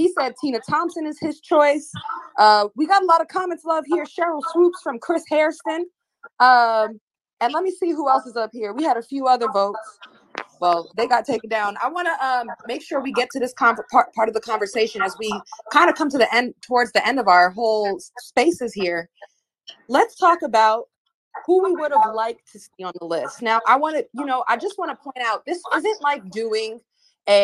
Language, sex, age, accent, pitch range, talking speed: English, female, 20-39, American, 205-305 Hz, 225 wpm